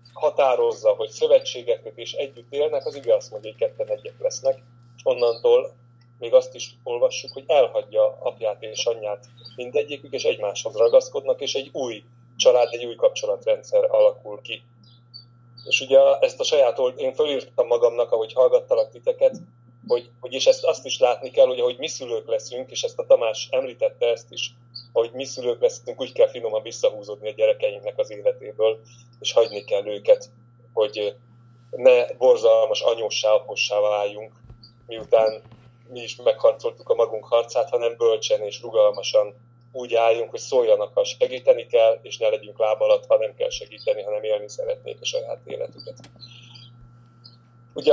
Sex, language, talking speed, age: male, Hungarian, 155 wpm, 30-49